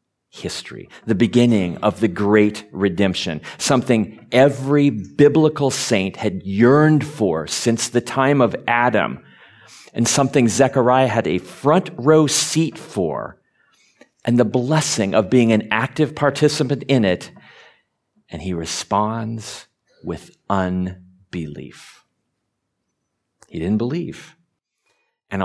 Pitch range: 90-125 Hz